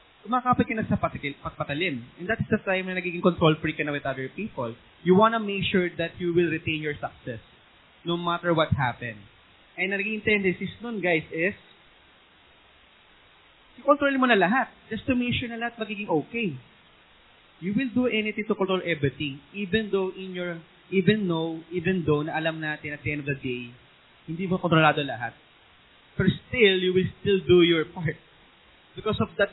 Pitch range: 150-195 Hz